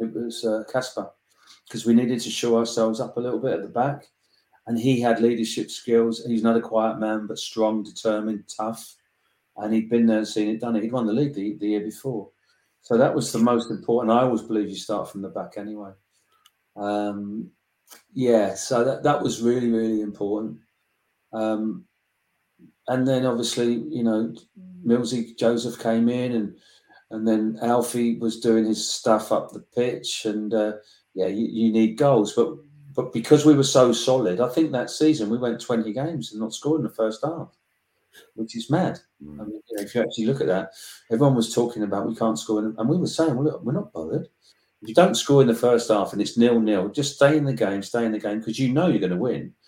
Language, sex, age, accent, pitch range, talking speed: English, male, 40-59, British, 110-125 Hz, 215 wpm